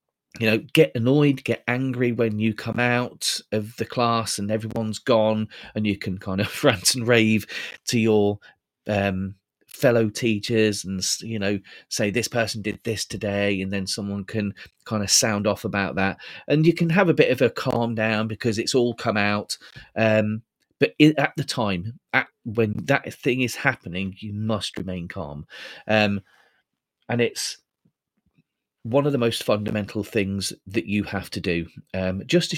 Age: 30-49